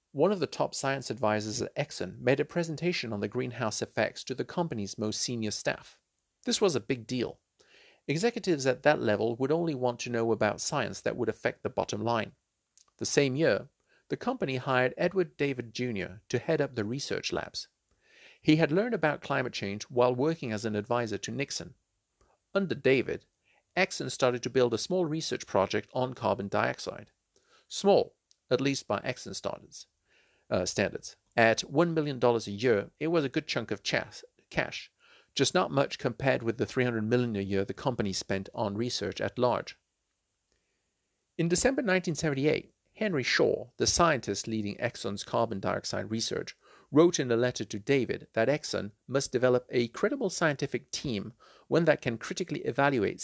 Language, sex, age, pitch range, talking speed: English, male, 50-69, 110-150 Hz, 170 wpm